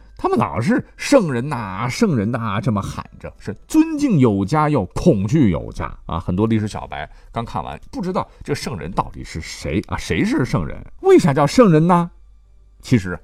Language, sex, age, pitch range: Chinese, male, 50-69, 95-145 Hz